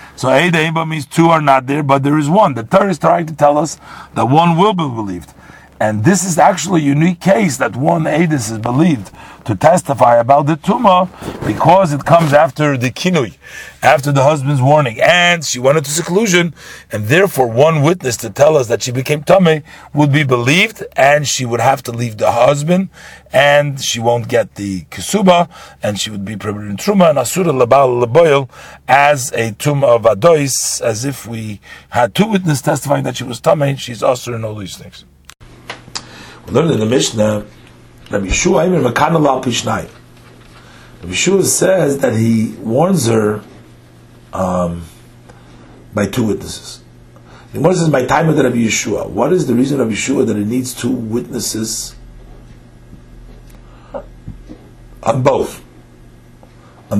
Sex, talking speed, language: male, 165 wpm, English